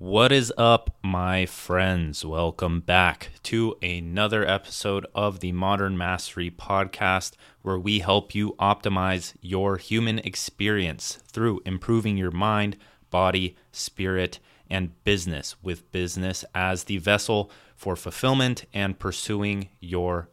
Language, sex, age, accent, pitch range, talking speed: English, male, 30-49, American, 90-105 Hz, 120 wpm